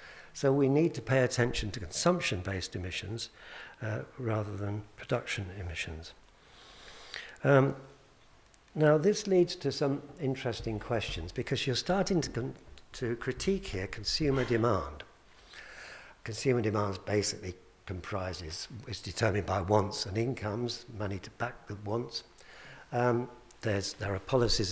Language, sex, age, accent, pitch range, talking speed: English, male, 60-79, British, 105-130 Hz, 120 wpm